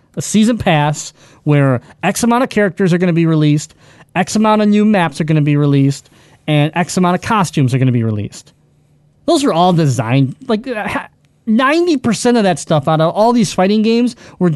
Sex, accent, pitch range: male, American, 145-195 Hz